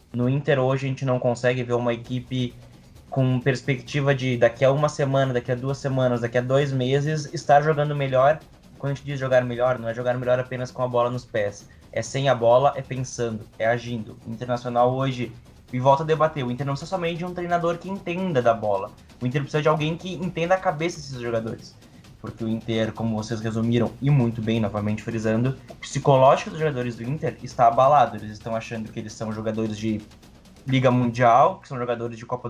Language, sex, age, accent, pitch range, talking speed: Portuguese, male, 20-39, Brazilian, 120-145 Hz, 210 wpm